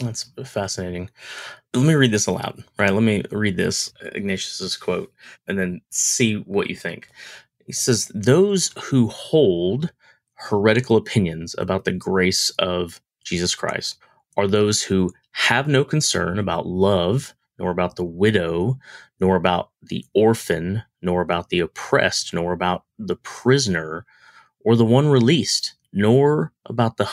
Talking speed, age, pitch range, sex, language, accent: 140 wpm, 30-49, 95-125 Hz, male, English, American